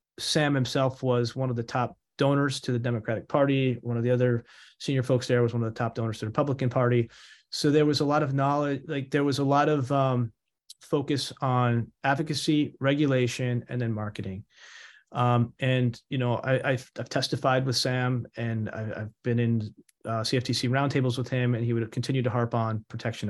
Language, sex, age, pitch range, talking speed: English, male, 30-49, 120-140 Hz, 195 wpm